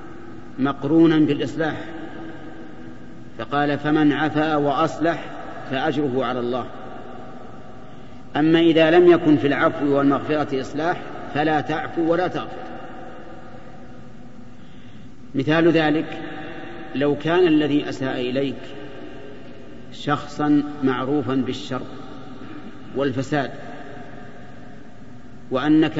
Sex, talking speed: male, 75 wpm